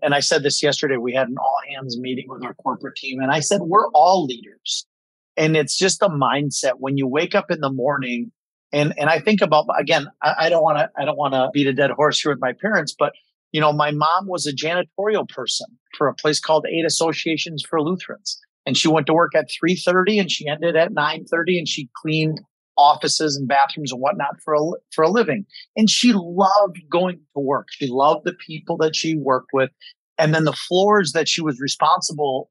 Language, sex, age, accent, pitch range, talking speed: English, male, 40-59, American, 140-175 Hz, 225 wpm